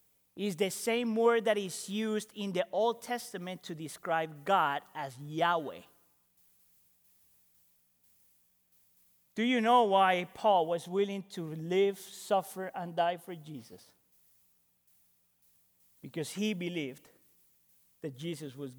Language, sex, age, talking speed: English, male, 40-59, 115 wpm